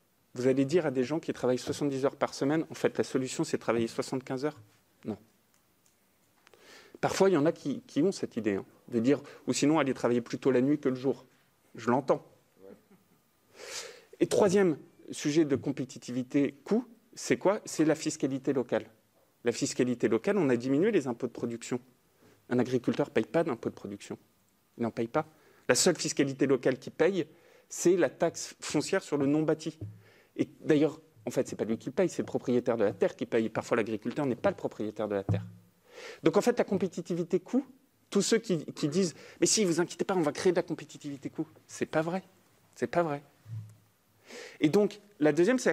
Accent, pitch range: French, 130-180 Hz